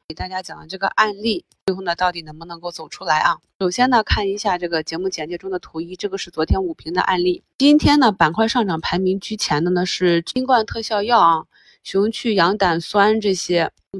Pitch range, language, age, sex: 170-210 Hz, Chinese, 20-39, female